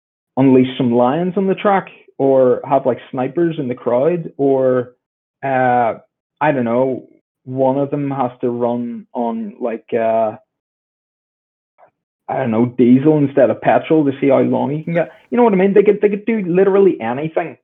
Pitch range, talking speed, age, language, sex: 120-160 Hz, 180 wpm, 30-49, English, male